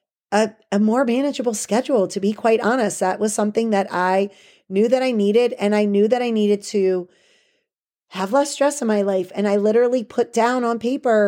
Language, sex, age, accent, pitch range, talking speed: English, female, 30-49, American, 200-245 Hz, 200 wpm